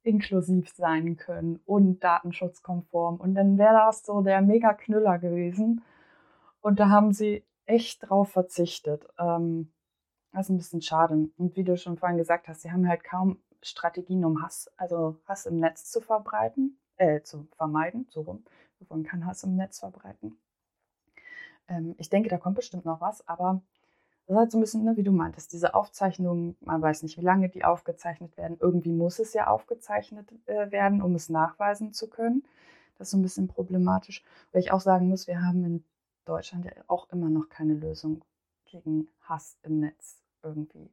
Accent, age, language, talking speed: German, 20-39, German, 185 wpm